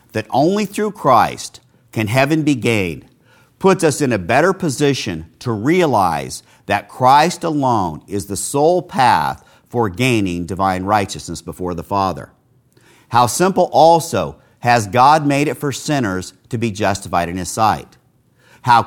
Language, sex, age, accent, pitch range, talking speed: English, male, 50-69, American, 105-145 Hz, 145 wpm